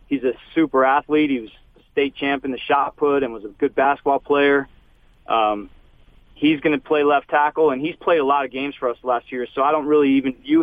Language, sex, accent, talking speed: English, male, American, 235 wpm